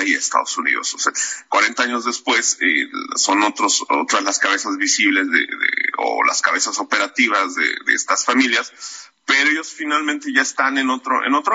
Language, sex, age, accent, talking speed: Spanish, male, 40-59, Mexican, 175 wpm